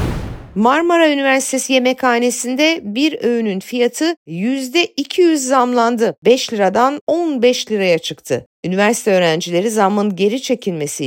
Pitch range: 165-240 Hz